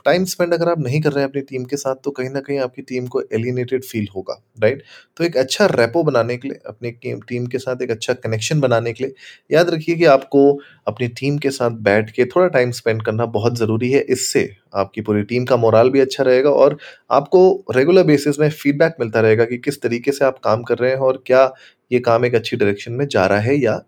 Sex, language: male, Hindi